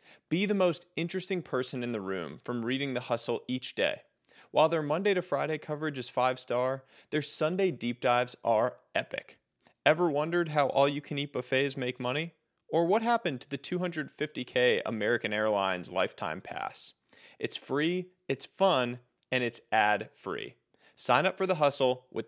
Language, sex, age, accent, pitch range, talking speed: English, male, 30-49, American, 120-175 Hz, 160 wpm